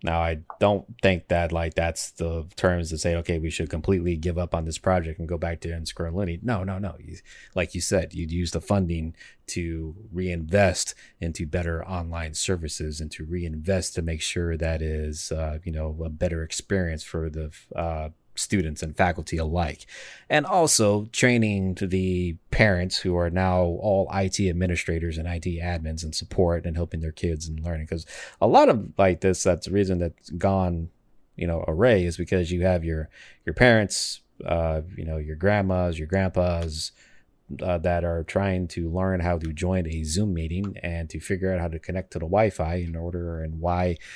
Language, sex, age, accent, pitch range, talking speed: English, male, 30-49, American, 80-95 Hz, 190 wpm